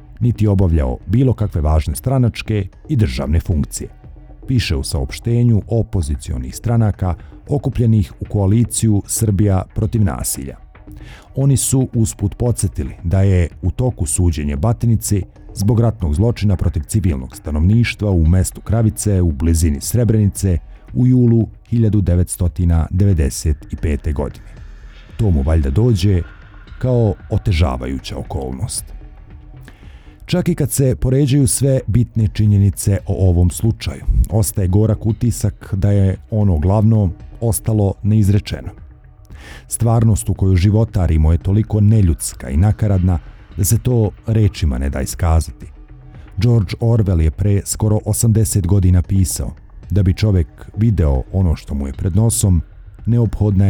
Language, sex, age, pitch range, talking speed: Croatian, male, 50-69, 85-110 Hz, 120 wpm